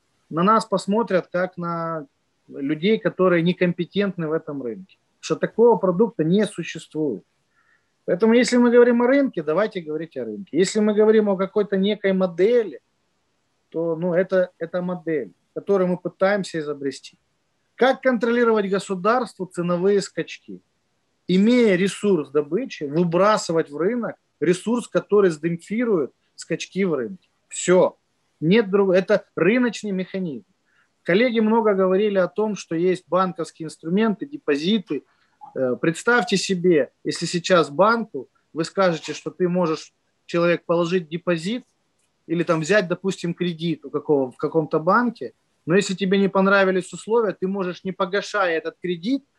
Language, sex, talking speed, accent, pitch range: Ukrainian, male, 130 wpm, native, 165-215 Hz